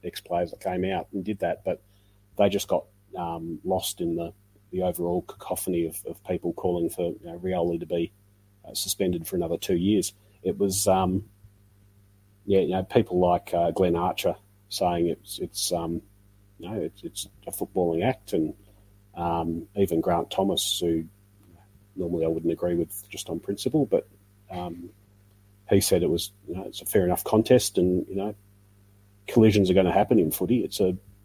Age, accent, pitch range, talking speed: 30-49, Australian, 90-100 Hz, 185 wpm